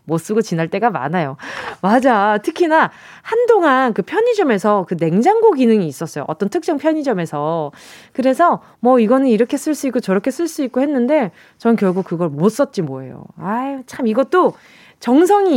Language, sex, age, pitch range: Korean, female, 20-39, 190-290 Hz